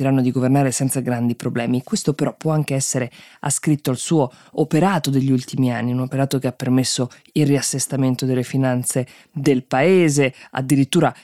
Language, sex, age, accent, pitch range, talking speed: Italian, female, 20-39, native, 130-155 Hz, 155 wpm